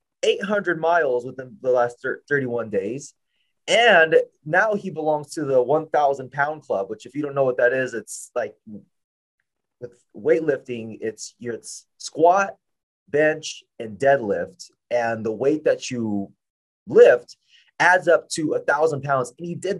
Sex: male